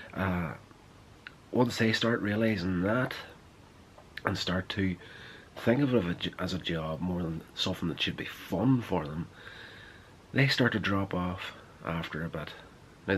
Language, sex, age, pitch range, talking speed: English, male, 30-49, 90-115 Hz, 150 wpm